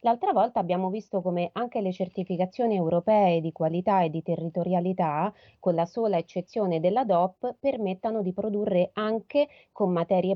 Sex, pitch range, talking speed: female, 175-225 Hz, 150 wpm